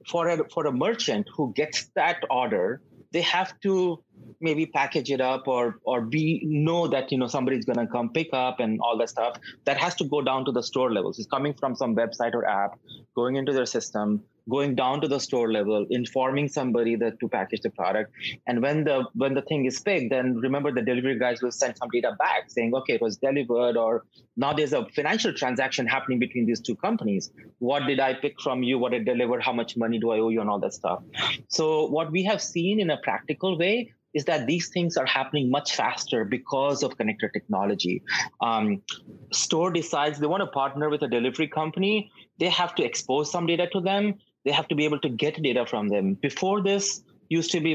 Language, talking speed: English, 220 wpm